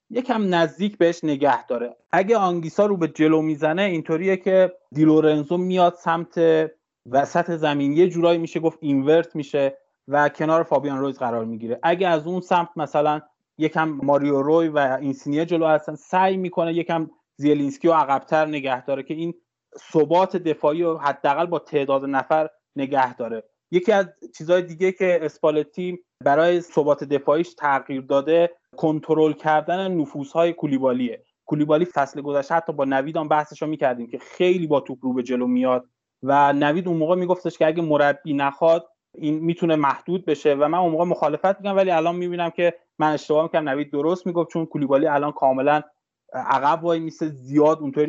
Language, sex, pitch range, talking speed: Persian, male, 145-170 Hz, 160 wpm